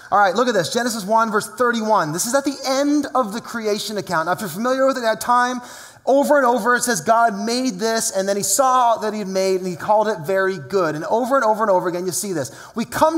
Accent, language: American, English